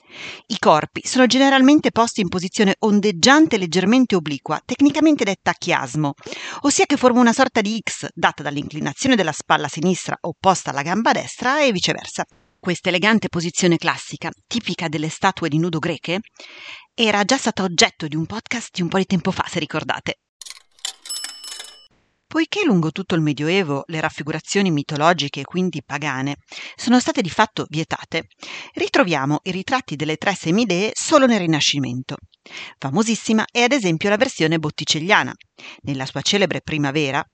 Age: 40-59